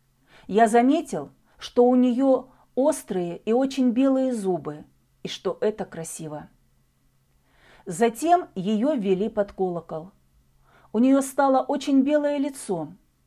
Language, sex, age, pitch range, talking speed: Russian, female, 40-59, 170-250 Hz, 115 wpm